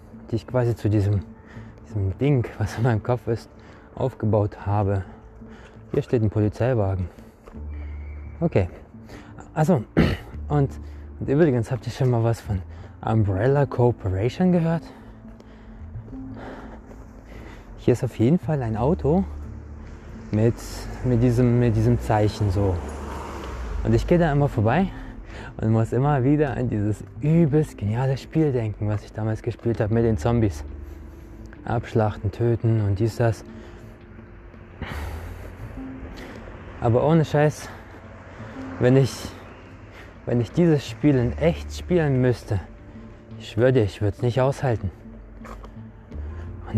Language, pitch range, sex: German, 100-130 Hz, male